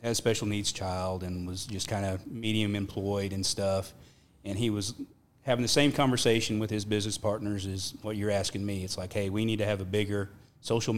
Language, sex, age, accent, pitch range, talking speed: English, male, 30-49, American, 100-115 Hz, 220 wpm